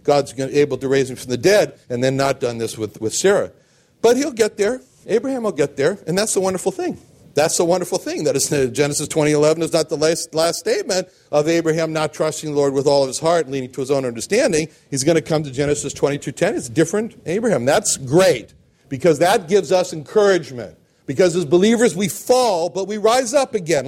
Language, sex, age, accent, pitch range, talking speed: English, male, 60-79, American, 140-190 Hz, 225 wpm